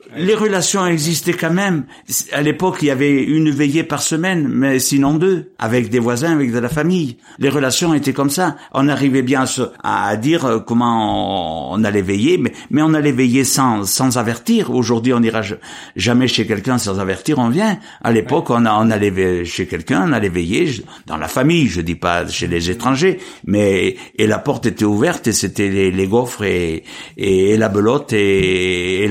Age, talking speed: 60-79, 200 wpm